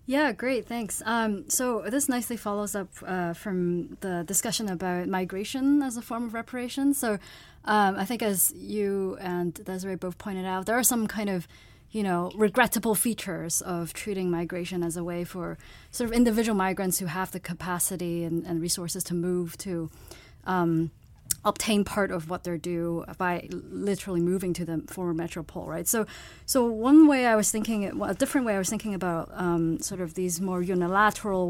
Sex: female